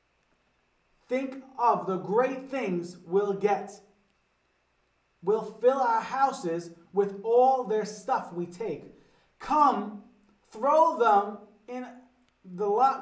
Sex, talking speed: male, 105 wpm